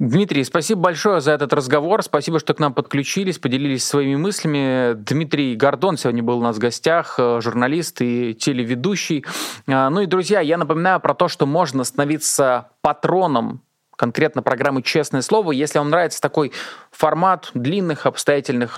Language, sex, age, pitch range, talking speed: Russian, male, 20-39, 125-170 Hz, 150 wpm